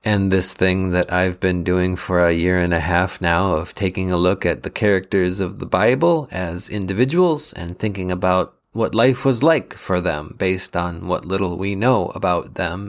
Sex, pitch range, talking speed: male, 90-115 Hz, 200 wpm